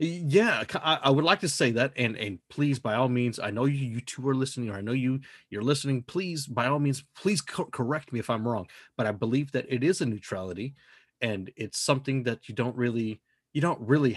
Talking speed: 230 wpm